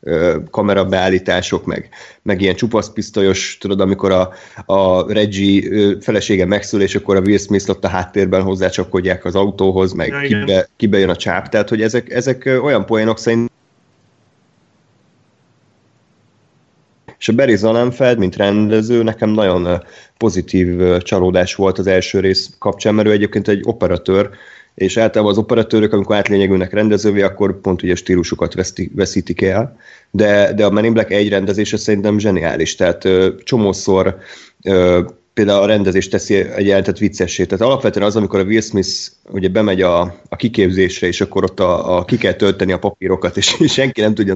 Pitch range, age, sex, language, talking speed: 95-110 Hz, 30-49, male, Hungarian, 155 wpm